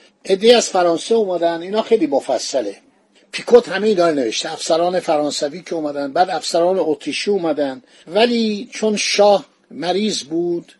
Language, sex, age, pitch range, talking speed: Persian, male, 50-69, 170-220 Hz, 135 wpm